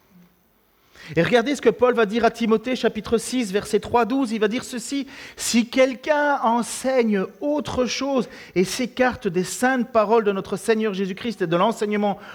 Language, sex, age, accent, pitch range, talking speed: French, male, 40-59, French, 175-245 Hz, 170 wpm